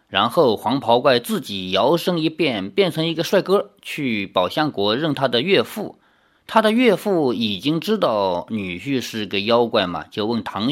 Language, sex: Chinese, male